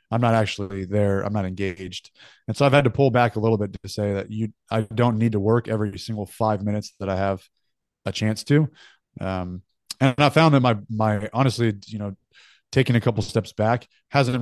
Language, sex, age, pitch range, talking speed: English, male, 30-49, 100-120 Hz, 215 wpm